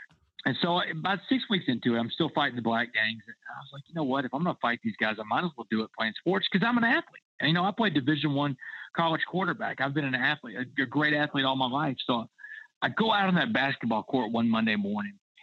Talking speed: 270 wpm